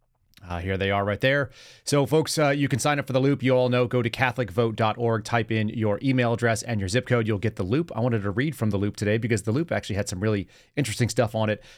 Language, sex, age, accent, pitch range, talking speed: English, male, 30-49, American, 105-125 Hz, 275 wpm